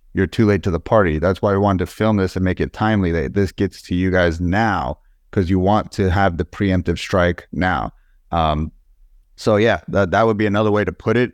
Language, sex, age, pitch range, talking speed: English, male, 30-49, 90-110 Hz, 235 wpm